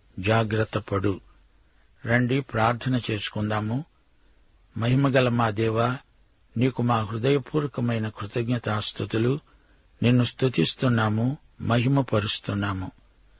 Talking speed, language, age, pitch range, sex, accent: 65 wpm, Telugu, 60-79, 110-130 Hz, male, native